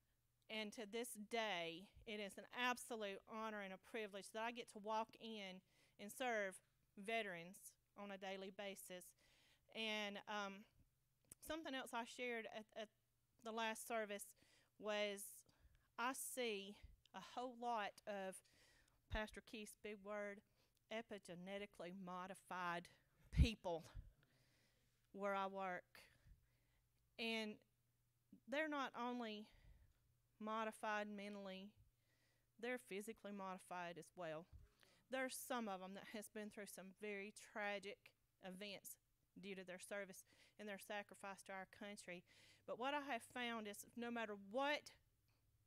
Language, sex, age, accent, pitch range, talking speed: English, female, 40-59, American, 175-220 Hz, 125 wpm